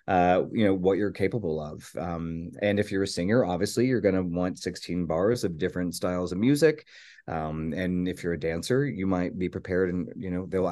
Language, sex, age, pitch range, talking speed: English, male, 30-49, 90-110 Hz, 220 wpm